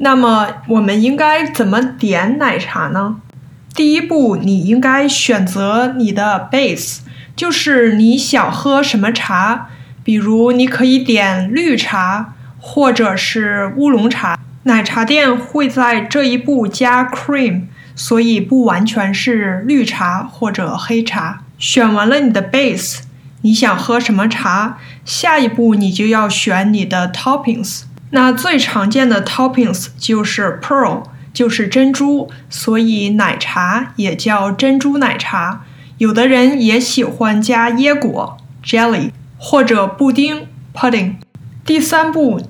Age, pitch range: 20-39, 195-255 Hz